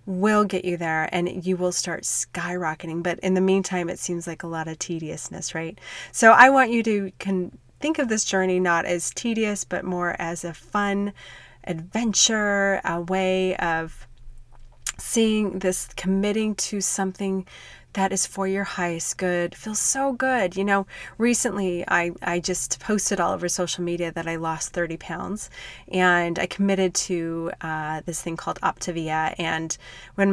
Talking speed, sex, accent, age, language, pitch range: 165 wpm, female, American, 30-49, English, 170-205 Hz